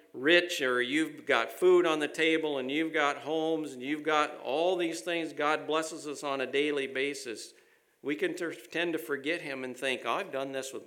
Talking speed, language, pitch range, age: 205 wpm, English, 130-180 Hz, 50-69